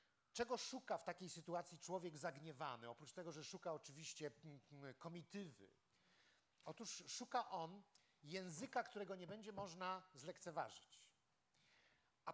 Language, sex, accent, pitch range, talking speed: Polish, male, native, 160-225 Hz, 110 wpm